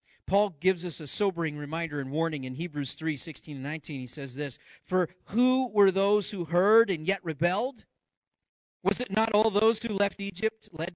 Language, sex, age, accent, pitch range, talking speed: English, male, 40-59, American, 145-215 Hz, 190 wpm